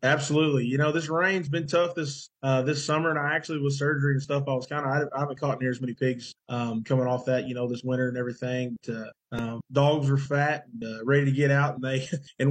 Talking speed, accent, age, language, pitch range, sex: 270 wpm, American, 20-39, English, 125-145 Hz, male